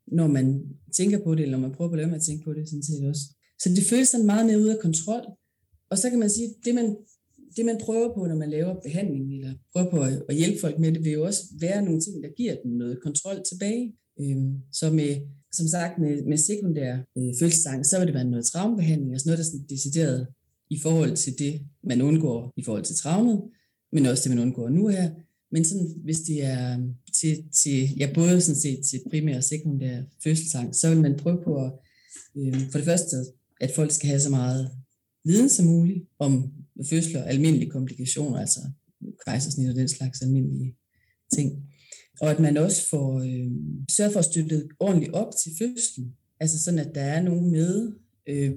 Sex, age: female, 30-49